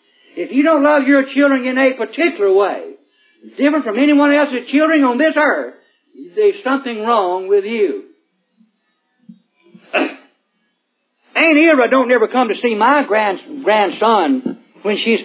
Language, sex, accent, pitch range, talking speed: English, male, American, 245-305 Hz, 140 wpm